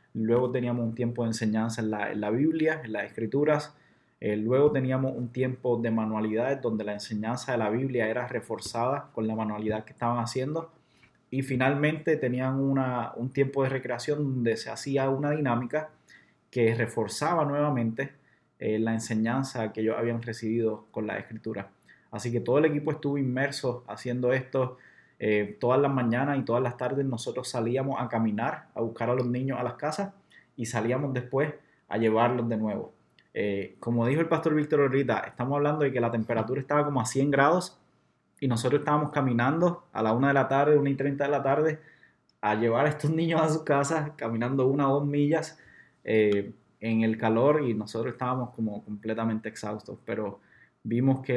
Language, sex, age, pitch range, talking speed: Spanish, male, 20-39, 115-140 Hz, 185 wpm